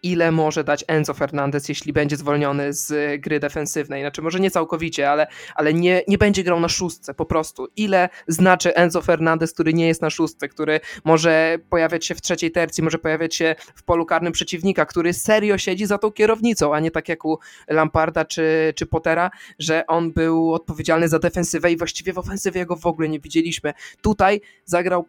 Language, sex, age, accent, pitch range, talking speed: Polish, male, 20-39, native, 155-180 Hz, 190 wpm